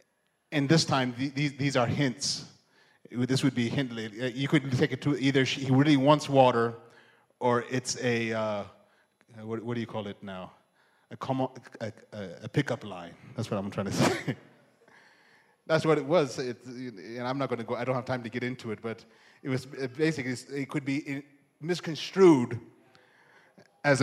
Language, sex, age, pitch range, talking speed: English, male, 30-49, 120-145 Hz, 175 wpm